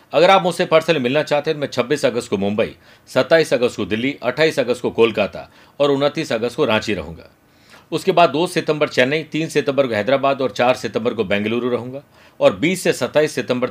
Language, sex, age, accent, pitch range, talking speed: Hindi, male, 50-69, native, 115-150 Hz, 205 wpm